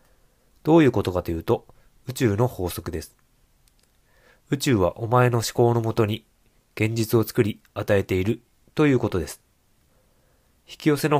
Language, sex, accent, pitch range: Japanese, male, native, 105-130 Hz